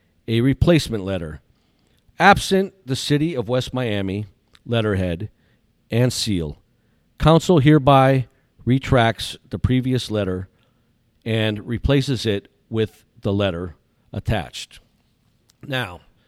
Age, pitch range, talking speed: 50-69, 105-145 Hz, 95 wpm